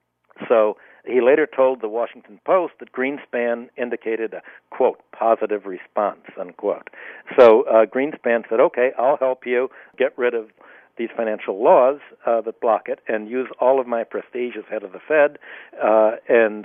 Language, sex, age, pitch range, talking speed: English, male, 60-79, 110-150 Hz, 165 wpm